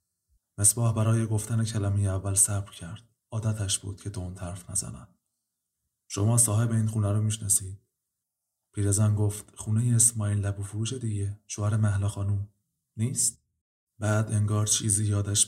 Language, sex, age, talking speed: Persian, male, 30-49, 130 wpm